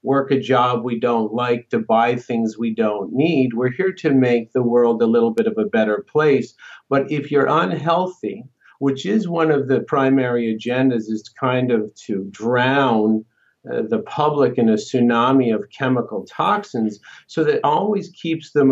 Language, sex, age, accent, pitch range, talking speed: English, male, 50-69, American, 115-140 Hz, 180 wpm